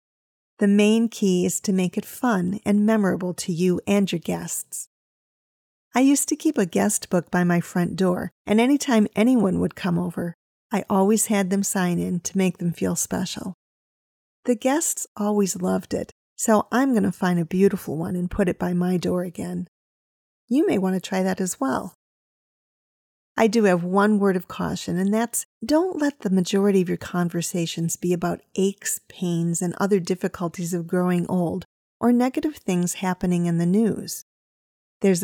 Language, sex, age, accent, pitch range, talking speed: English, female, 40-59, American, 180-220 Hz, 180 wpm